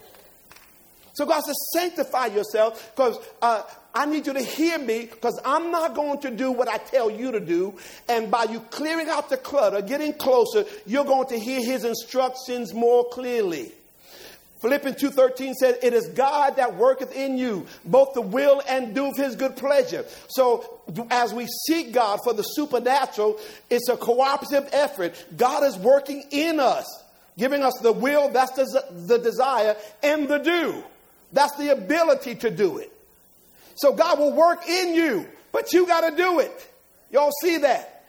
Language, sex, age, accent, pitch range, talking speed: English, male, 50-69, American, 245-295 Hz, 170 wpm